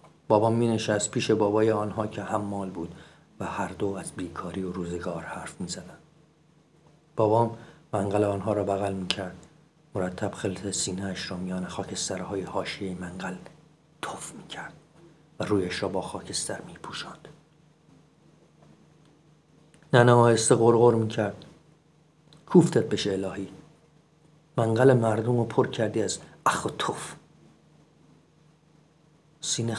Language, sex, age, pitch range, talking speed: Persian, male, 50-69, 105-155 Hz, 125 wpm